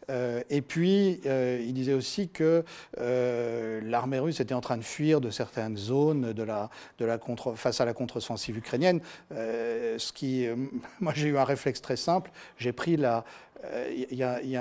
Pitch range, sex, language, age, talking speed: 120-150 Hz, male, French, 50-69, 200 wpm